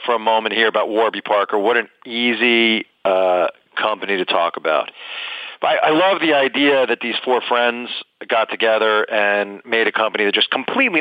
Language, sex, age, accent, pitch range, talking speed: English, male, 40-59, American, 110-145 Hz, 185 wpm